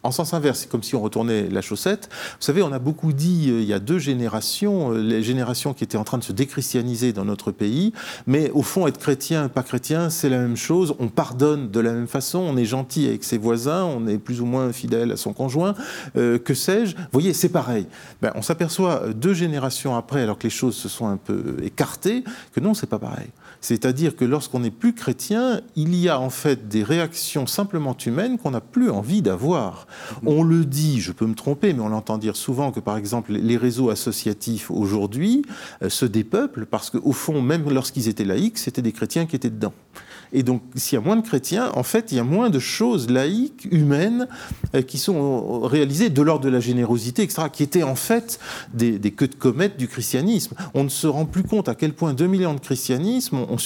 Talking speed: 220 wpm